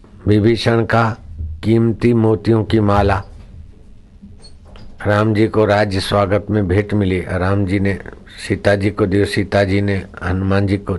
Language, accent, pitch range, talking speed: Hindi, native, 95-110 Hz, 145 wpm